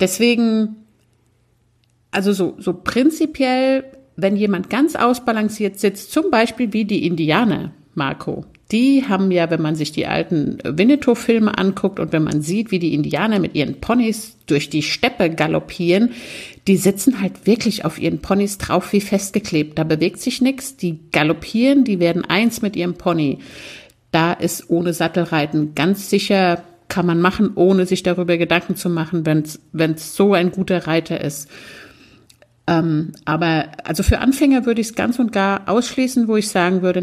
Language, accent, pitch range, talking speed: German, German, 165-220 Hz, 160 wpm